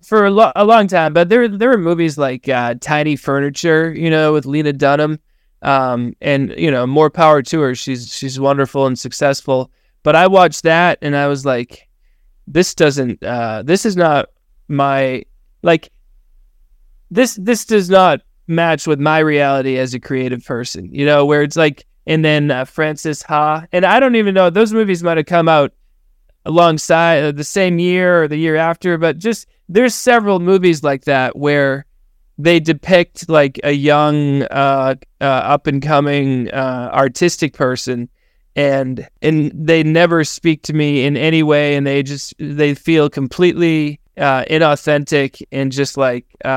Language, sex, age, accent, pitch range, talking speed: English, male, 20-39, American, 135-165 Hz, 170 wpm